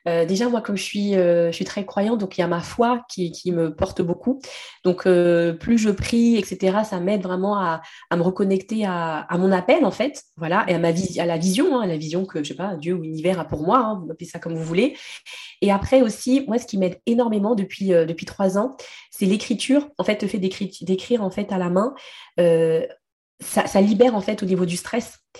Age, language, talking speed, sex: 20-39, French, 240 wpm, female